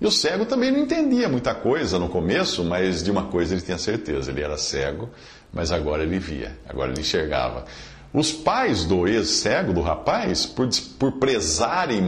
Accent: Brazilian